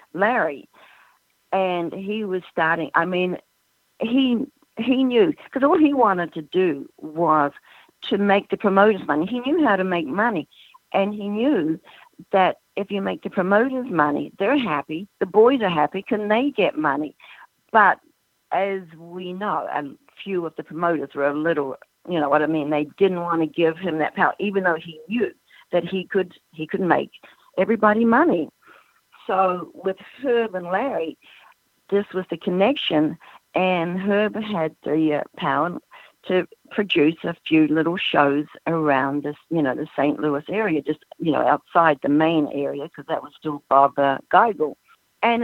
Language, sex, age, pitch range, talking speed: English, female, 60-79, 155-210 Hz, 170 wpm